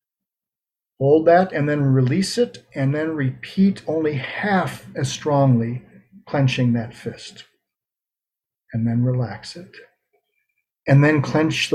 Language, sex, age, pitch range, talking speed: English, male, 40-59, 130-190 Hz, 115 wpm